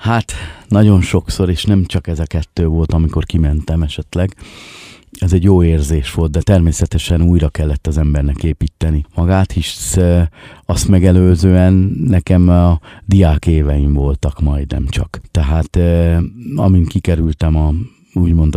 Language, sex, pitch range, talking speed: Hungarian, male, 80-95 Hz, 135 wpm